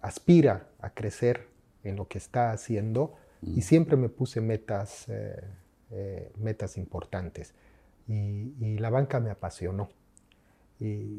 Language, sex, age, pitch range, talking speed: Spanish, male, 40-59, 100-115 Hz, 130 wpm